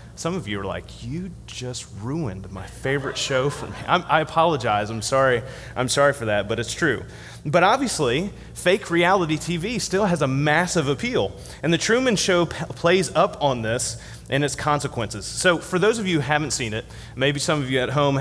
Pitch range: 120-165 Hz